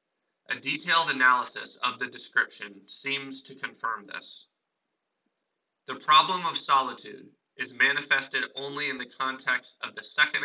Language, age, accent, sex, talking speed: English, 20-39, American, male, 130 wpm